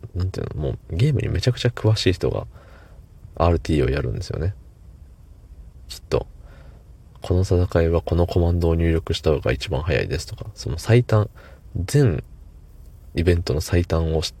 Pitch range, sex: 75-100 Hz, male